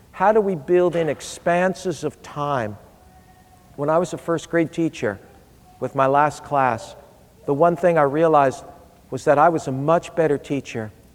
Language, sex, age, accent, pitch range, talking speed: English, male, 50-69, American, 125-170 Hz, 170 wpm